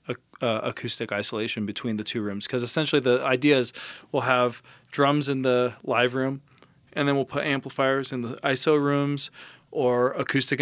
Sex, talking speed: male, 170 wpm